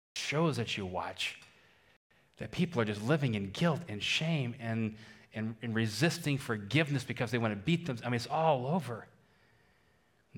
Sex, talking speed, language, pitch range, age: male, 175 wpm, English, 100-120 Hz, 30-49